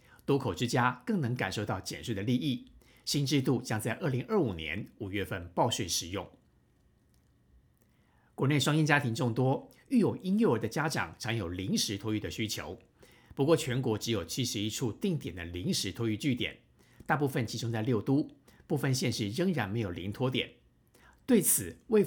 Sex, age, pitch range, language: male, 50-69, 105-140 Hz, Chinese